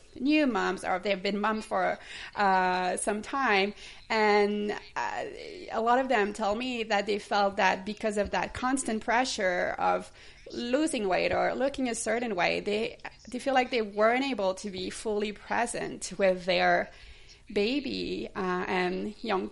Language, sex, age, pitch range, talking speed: English, female, 30-49, 185-225 Hz, 160 wpm